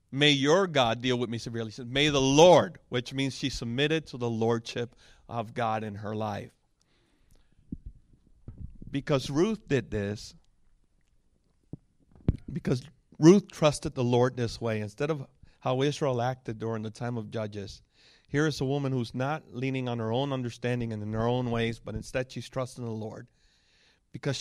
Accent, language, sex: American, English, male